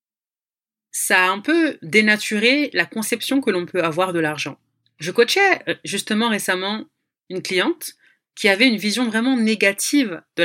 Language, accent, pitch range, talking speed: French, French, 170-240 Hz, 150 wpm